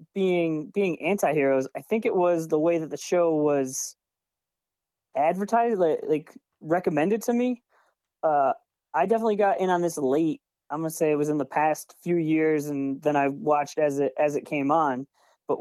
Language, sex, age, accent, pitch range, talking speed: English, male, 20-39, American, 145-200 Hz, 185 wpm